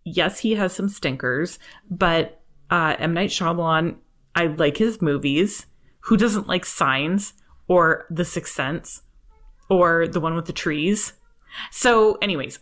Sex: female